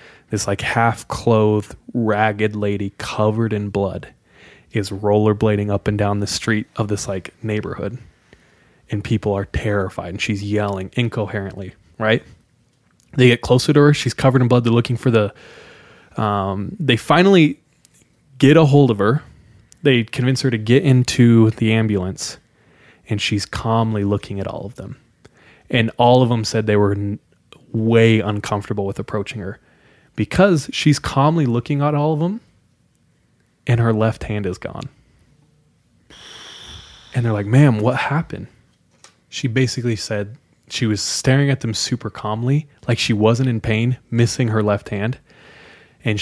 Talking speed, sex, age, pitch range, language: 155 wpm, male, 20-39, 105-125 Hz, English